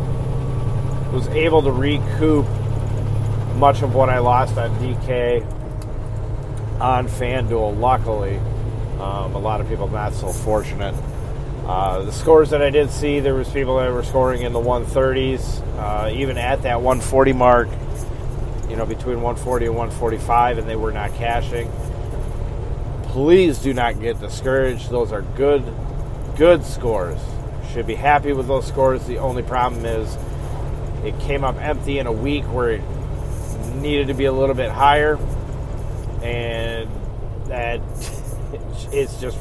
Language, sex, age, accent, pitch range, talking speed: English, male, 40-59, American, 115-130 Hz, 145 wpm